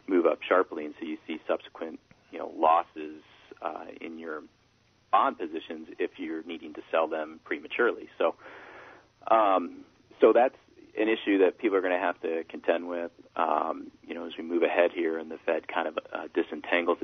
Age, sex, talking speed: 40-59, male, 185 wpm